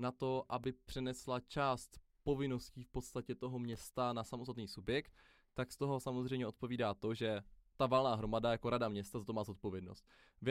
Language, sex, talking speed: Czech, male, 175 wpm